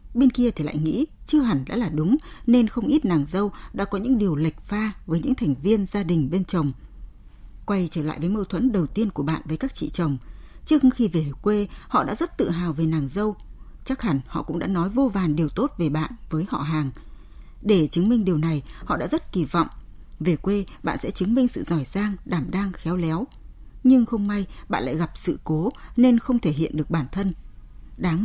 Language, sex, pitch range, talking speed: Vietnamese, female, 160-230 Hz, 230 wpm